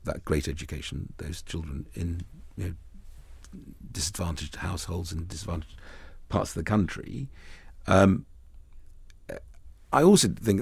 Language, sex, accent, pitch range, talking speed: English, male, British, 80-105 Hz, 115 wpm